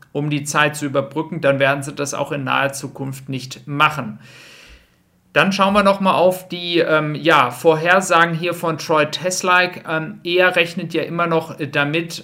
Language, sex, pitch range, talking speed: German, male, 145-160 Hz, 160 wpm